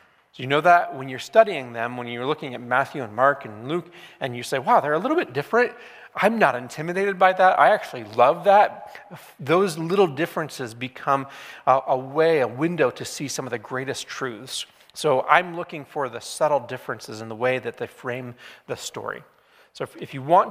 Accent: American